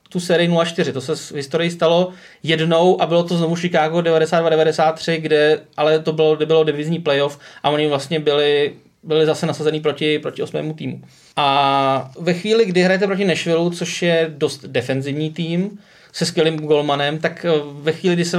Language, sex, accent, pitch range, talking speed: Czech, male, native, 155-175 Hz, 175 wpm